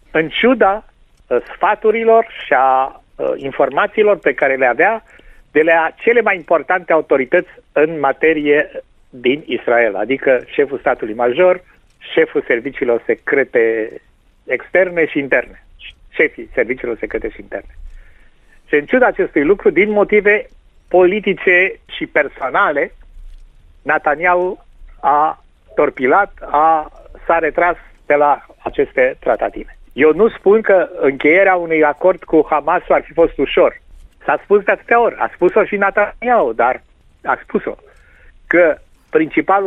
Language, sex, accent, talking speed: Romanian, male, native, 125 wpm